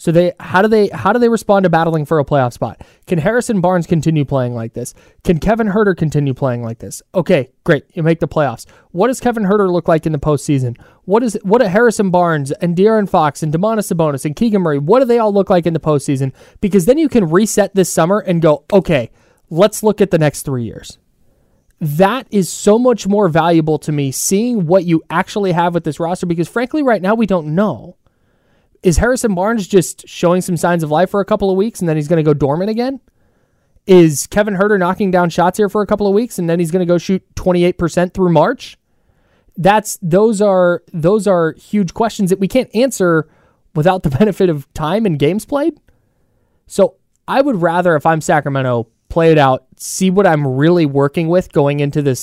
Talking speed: 215 wpm